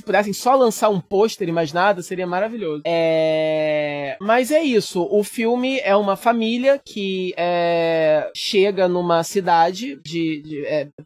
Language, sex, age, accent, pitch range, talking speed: Portuguese, male, 20-39, Brazilian, 160-210 Hz, 145 wpm